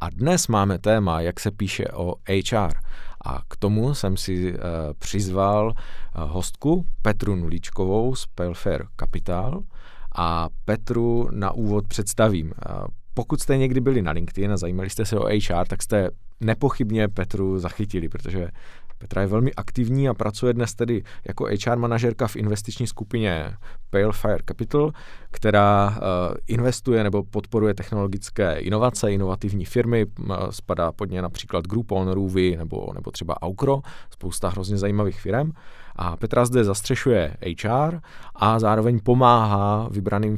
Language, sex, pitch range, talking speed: Czech, male, 90-115 Hz, 135 wpm